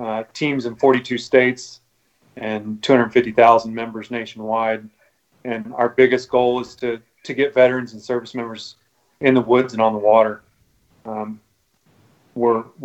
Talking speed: 140 wpm